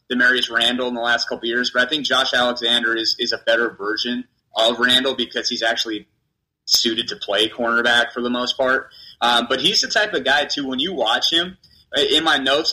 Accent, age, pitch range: American, 20-39, 115-150 Hz